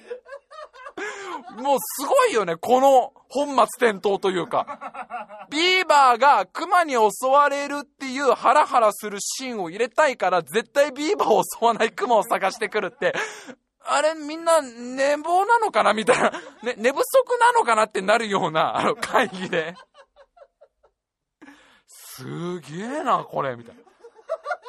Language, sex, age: Japanese, male, 20-39